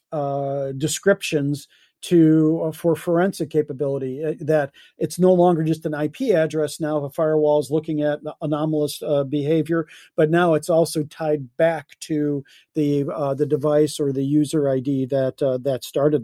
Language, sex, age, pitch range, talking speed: English, male, 40-59, 145-175 Hz, 165 wpm